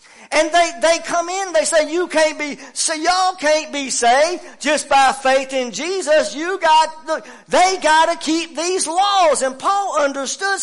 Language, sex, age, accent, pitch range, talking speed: English, male, 40-59, American, 300-380 Hz, 175 wpm